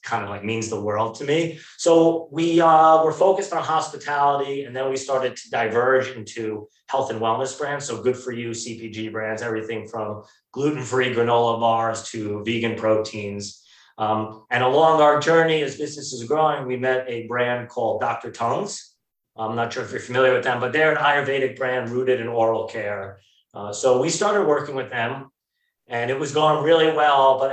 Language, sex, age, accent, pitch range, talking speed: English, male, 30-49, American, 115-140 Hz, 190 wpm